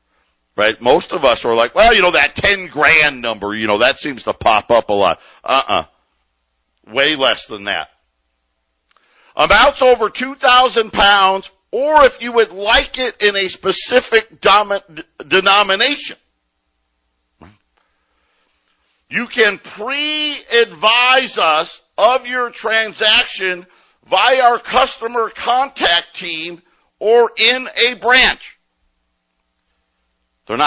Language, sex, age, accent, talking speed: English, male, 60-79, American, 115 wpm